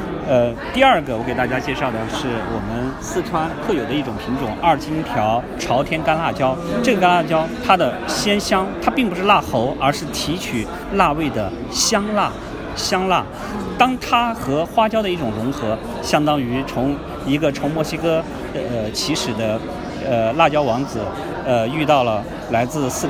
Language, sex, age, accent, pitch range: Chinese, male, 50-69, native, 120-180 Hz